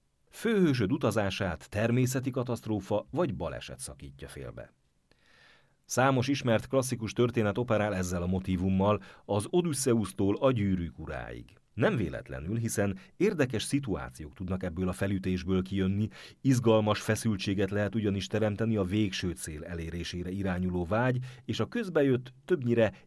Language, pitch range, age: Hungarian, 85-115 Hz, 40-59